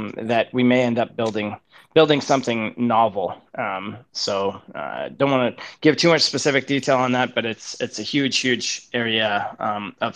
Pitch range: 110-130 Hz